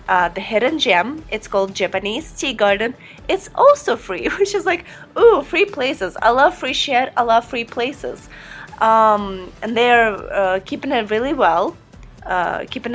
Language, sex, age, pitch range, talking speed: English, female, 20-39, 195-245 Hz, 165 wpm